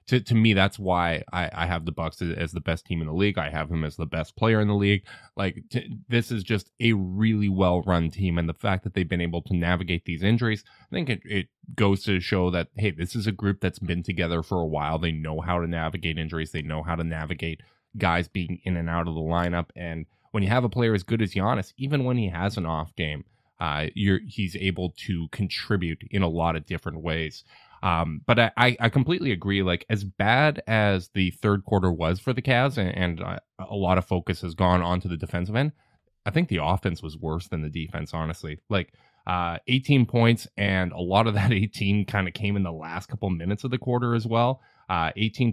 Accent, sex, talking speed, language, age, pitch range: American, male, 235 wpm, English, 20-39, 85-110 Hz